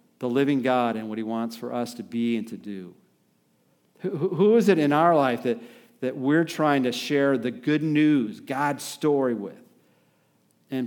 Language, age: English, 50-69